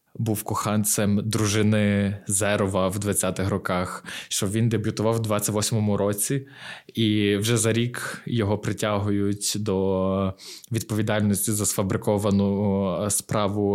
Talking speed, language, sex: 105 wpm, Ukrainian, male